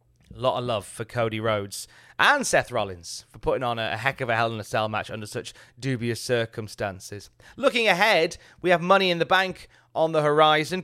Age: 30-49